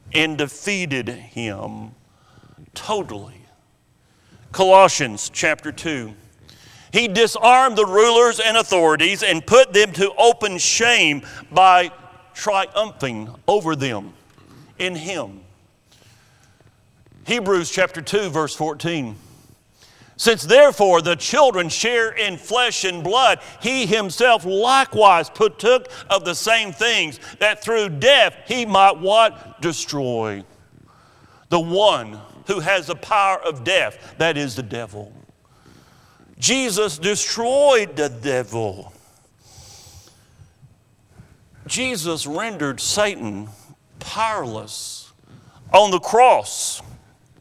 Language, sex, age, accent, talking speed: English, male, 50-69, American, 95 wpm